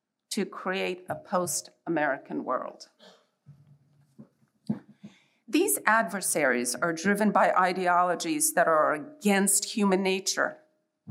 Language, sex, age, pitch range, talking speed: English, female, 50-69, 185-245 Hz, 85 wpm